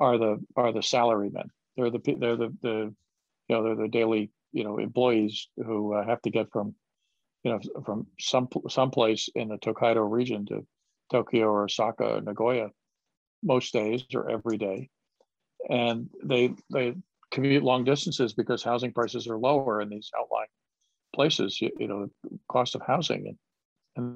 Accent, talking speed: American, 170 wpm